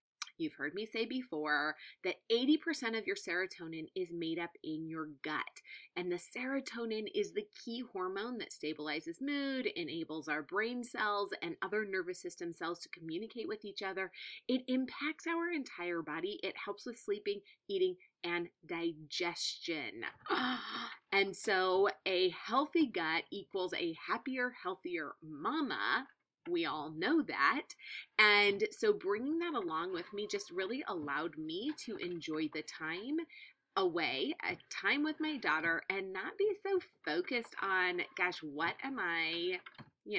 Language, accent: English, American